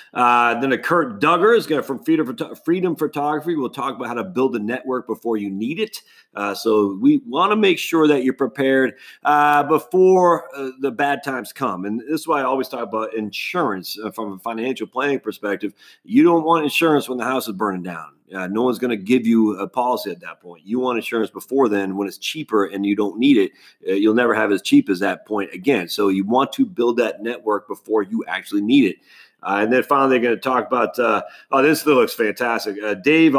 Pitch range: 105-145 Hz